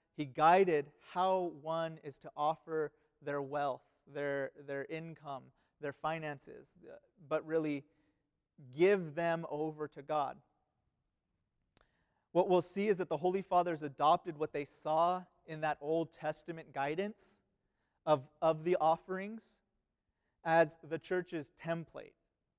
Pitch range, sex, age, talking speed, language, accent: 150-175 Hz, male, 30-49, 120 wpm, English, American